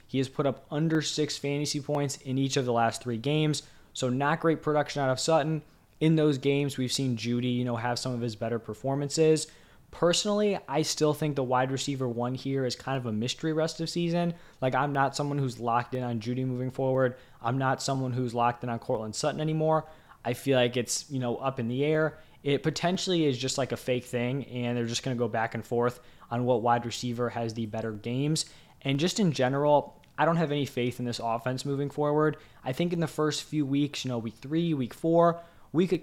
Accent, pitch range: American, 125-150 Hz